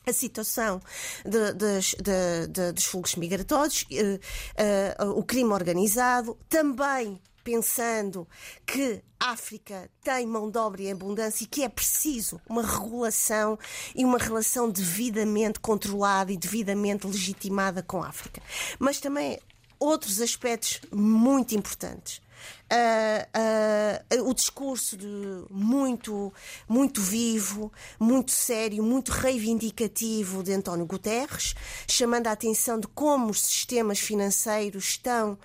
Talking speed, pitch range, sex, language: 110 wpm, 200-235 Hz, female, Portuguese